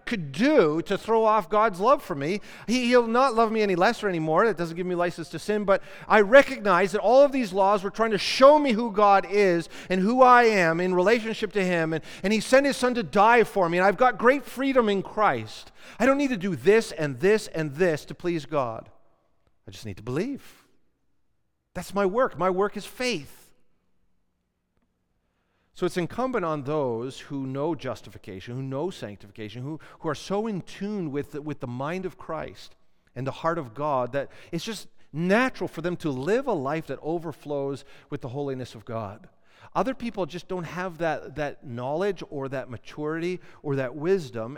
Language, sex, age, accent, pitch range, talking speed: English, male, 40-59, American, 140-210 Hz, 200 wpm